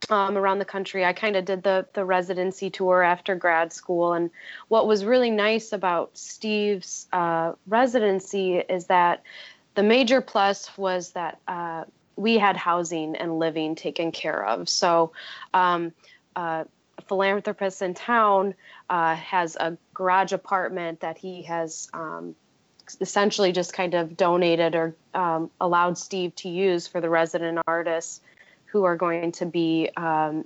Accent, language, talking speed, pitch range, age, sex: American, English, 150 wpm, 170-195 Hz, 20-39, female